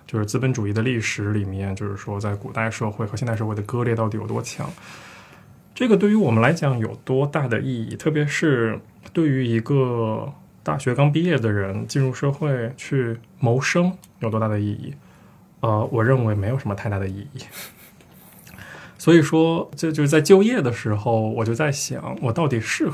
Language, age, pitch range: Chinese, 20-39, 105-140 Hz